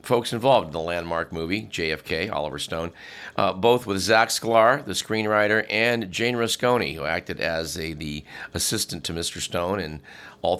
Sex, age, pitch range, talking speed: male, 50-69, 90-125 Hz, 170 wpm